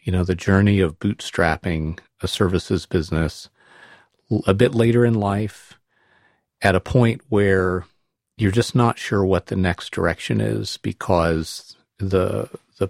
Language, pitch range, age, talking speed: English, 90-110 Hz, 50-69, 140 wpm